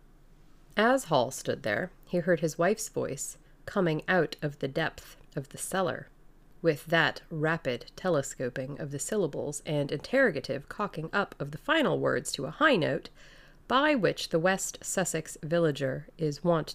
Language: English